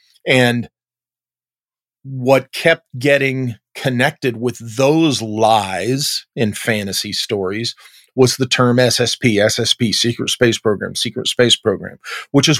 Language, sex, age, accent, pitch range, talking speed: English, male, 40-59, American, 110-135 Hz, 115 wpm